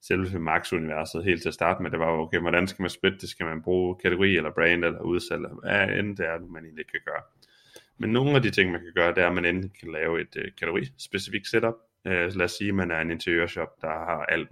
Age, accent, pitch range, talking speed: 20-39, native, 85-105 Hz, 250 wpm